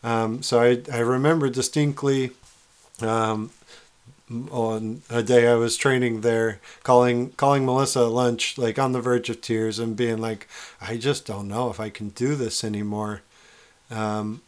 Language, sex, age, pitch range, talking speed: English, male, 40-59, 110-125 Hz, 160 wpm